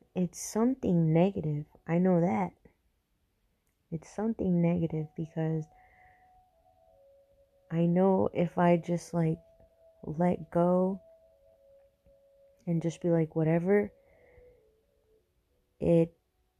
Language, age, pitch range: English, 20-39, 150-190 Hz